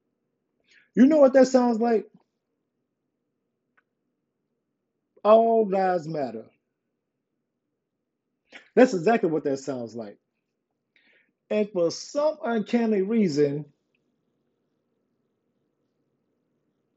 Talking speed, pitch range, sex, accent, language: 70 wpm, 160-235 Hz, male, American, English